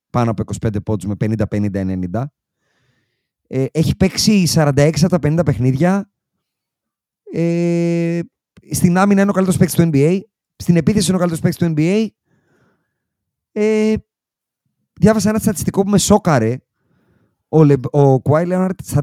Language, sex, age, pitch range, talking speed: Greek, male, 30-49, 125-180 Hz, 125 wpm